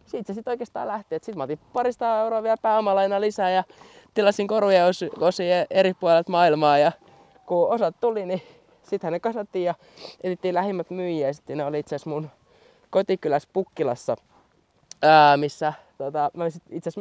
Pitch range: 135-180 Hz